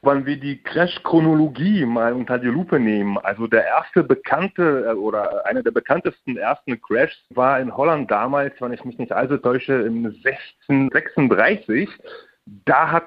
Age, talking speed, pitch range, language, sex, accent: 30-49, 150 wpm, 120-155 Hz, German, male, German